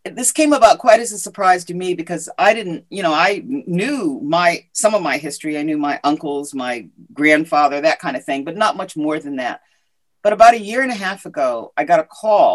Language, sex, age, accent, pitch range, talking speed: English, female, 40-59, American, 155-240 Hz, 235 wpm